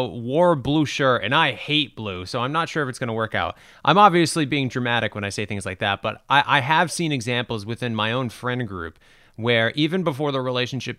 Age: 30-49